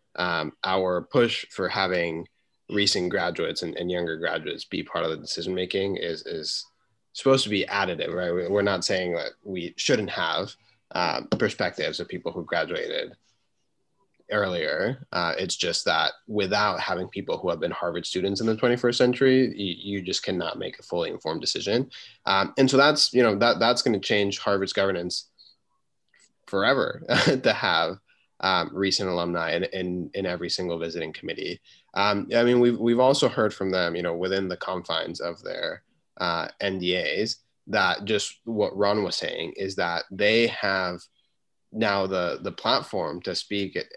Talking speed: 170 wpm